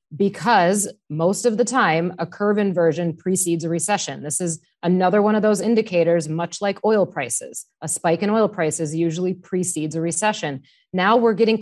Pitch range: 170-210 Hz